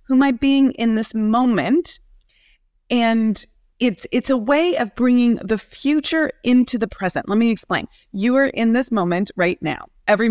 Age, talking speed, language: 30-49, 175 wpm, English